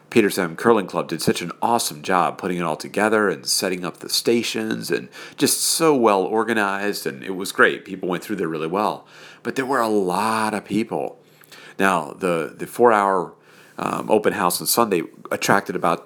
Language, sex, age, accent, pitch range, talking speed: English, male, 40-59, American, 90-110 Hz, 185 wpm